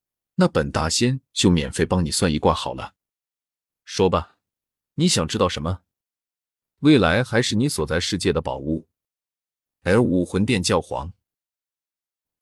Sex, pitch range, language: male, 80-100 Hz, Chinese